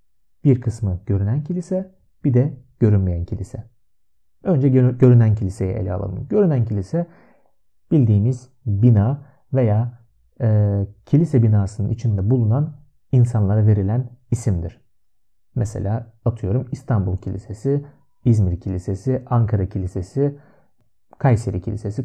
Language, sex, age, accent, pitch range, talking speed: Turkish, male, 40-59, native, 100-135 Hz, 100 wpm